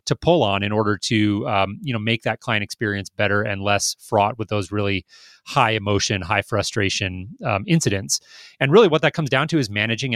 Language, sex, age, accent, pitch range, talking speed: English, male, 30-49, American, 105-130 Hz, 195 wpm